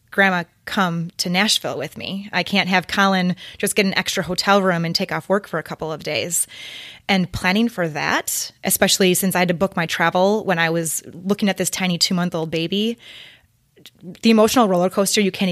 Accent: American